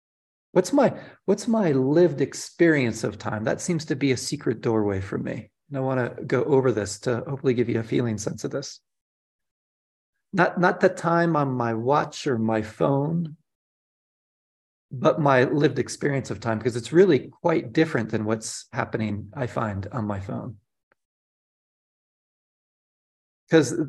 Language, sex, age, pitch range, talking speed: English, male, 40-59, 115-155 Hz, 160 wpm